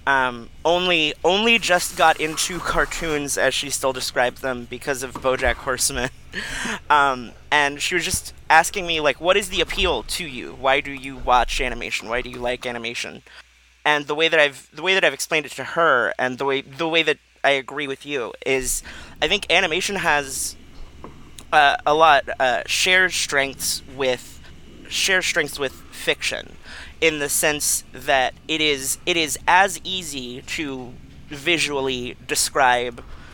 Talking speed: 165 wpm